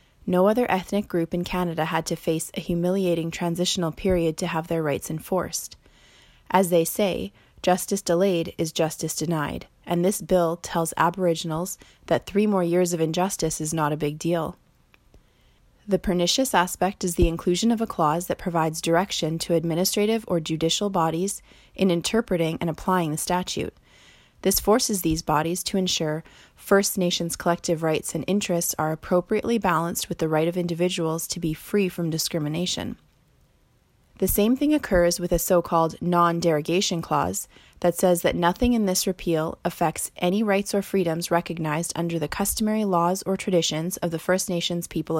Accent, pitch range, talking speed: American, 165-190 Hz, 165 wpm